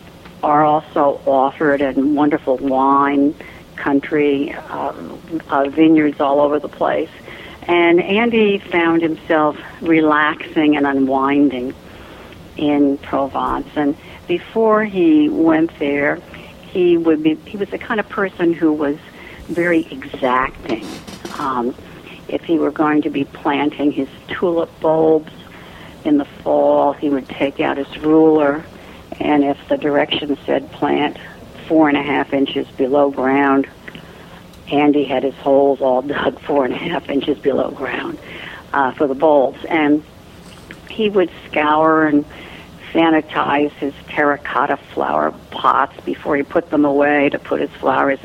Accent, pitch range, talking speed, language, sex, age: American, 140-170 Hz, 135 wpm, English, female, 60-79